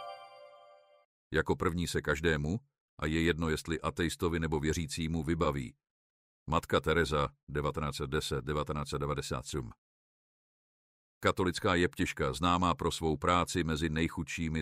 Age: 50-69